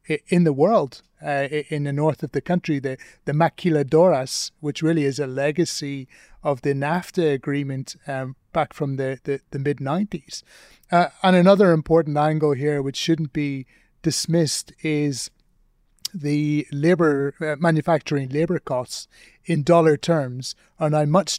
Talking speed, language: 150 wpm, English